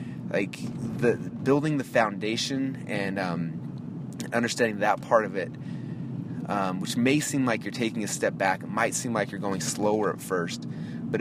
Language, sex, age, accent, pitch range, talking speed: English, male, 30-49, American, 100-130 Hz, 170 wpm